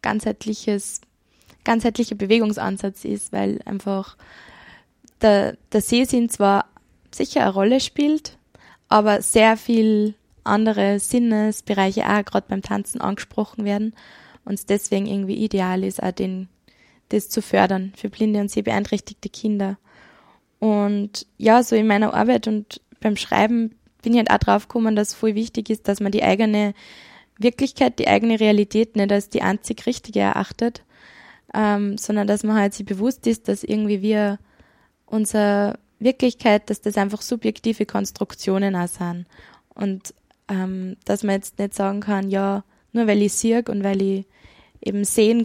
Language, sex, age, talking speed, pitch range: German, female, 20-39, 150 wpm, 200-225 Hz